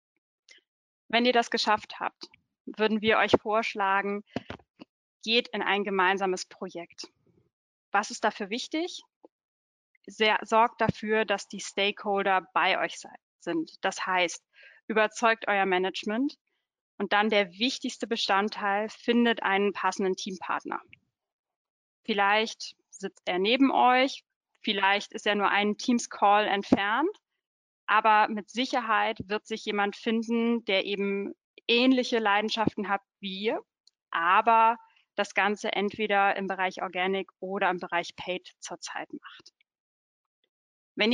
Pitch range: 200-235 Hz